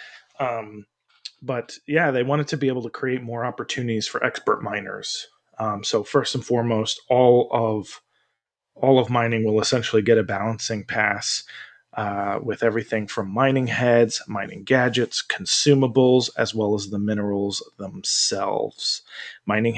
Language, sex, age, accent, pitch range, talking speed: English, male, 20-39, American, 110-130 Hz, 145 wpm